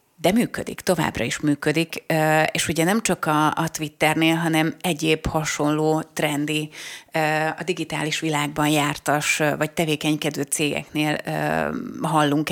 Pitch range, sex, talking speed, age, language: 150-160 Hz, female, 110 wpm, 30-49, Hungarian